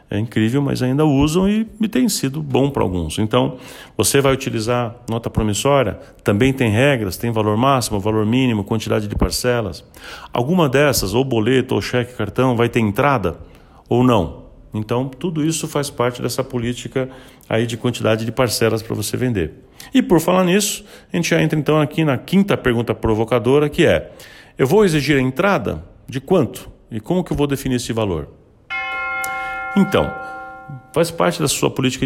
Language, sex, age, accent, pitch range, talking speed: Portuguese, male, 40-59, Brazilian, 110-160 Hz, 175 wpm